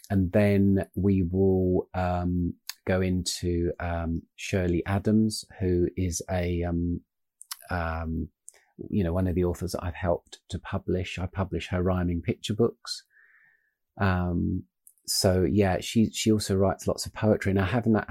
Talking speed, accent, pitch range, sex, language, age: 150 wpm, British, 85-100 Hz, male, English, 40-59